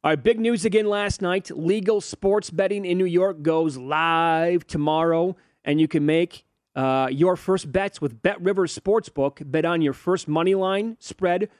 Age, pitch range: 30-49, 145-190 Hz